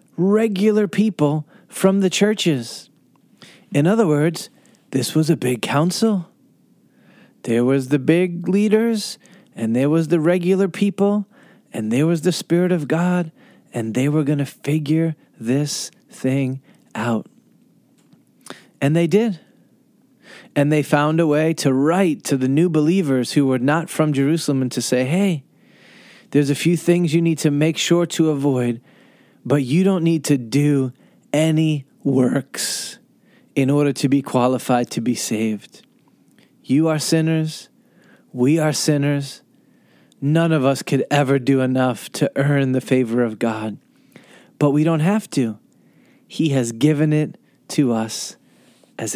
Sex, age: male, 30-49